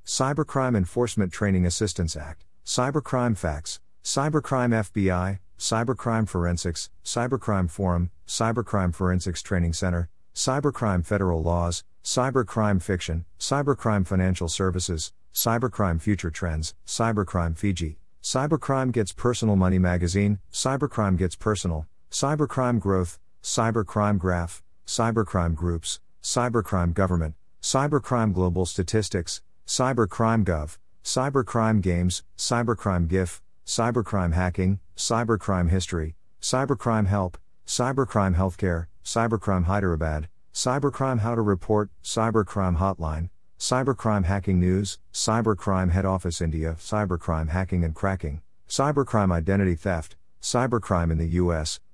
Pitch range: 85-115 Hz